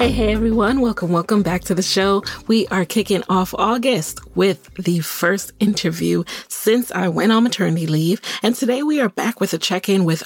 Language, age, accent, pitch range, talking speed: English, 30-49, American, 170-240 Hz, 195 wpm